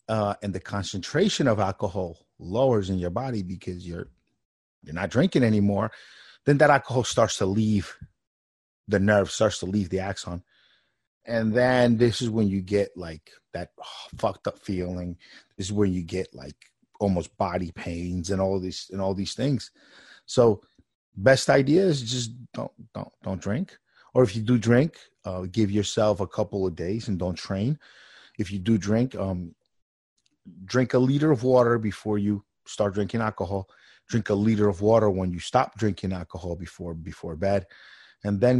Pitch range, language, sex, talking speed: 95-125 Hz, English, male, 175 wpm